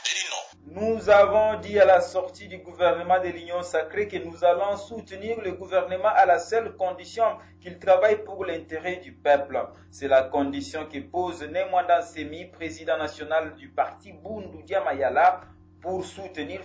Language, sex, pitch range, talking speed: French, male, 140-185 Hz, 150 wpm